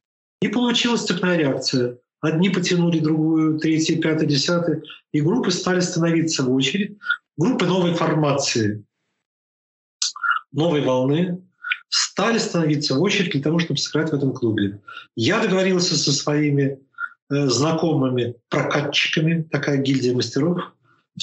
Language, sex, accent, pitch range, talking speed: Russian, male, native, 135-180 Hz, 120 wpm